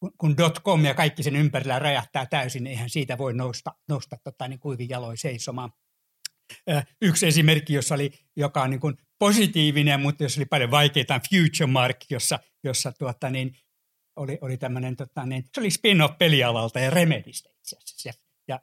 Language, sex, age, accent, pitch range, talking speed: Finnish, male, 60-79, native, 130-160 Hz, 150 wpm